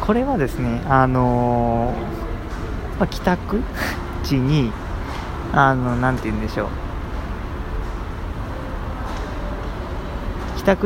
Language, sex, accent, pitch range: Japanese, male, native, 95-140 Hz